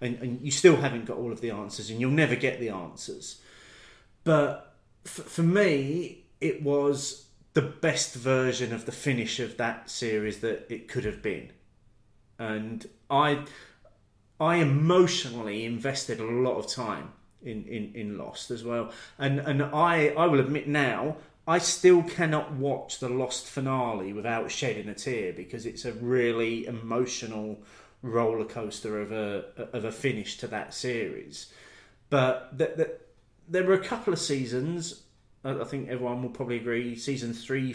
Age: 30-49